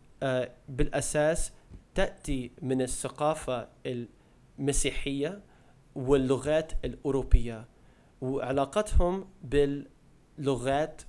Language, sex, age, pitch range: Arabic, male, 30-49, 120-145 Hz